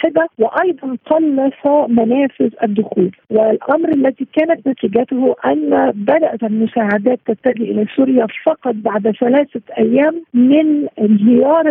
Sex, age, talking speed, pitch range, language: female, 50-69, 100 wpm, 230-295 Hz, Arabic